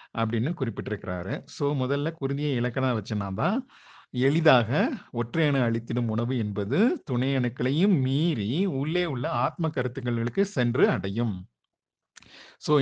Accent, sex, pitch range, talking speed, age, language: native, male, 120-155 Hz, 45 wpm, 50-69, Tamil